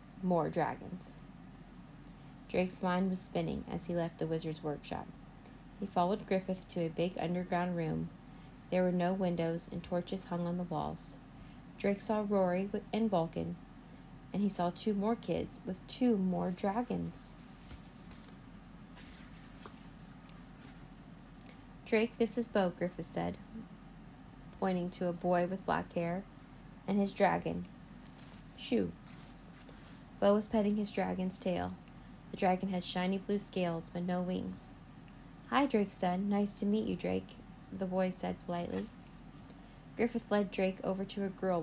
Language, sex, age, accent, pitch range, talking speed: English, female, 30-49, American, 170-200 Hz, 140 wpm